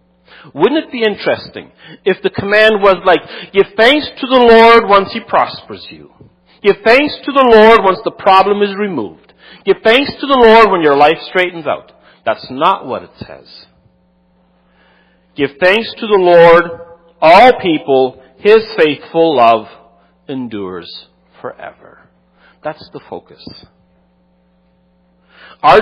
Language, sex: English, male